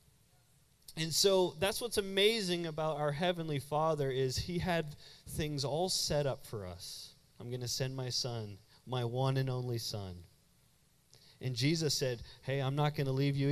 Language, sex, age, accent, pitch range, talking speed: English, male, 30-49, American, 135-195 Hz, 175 wpm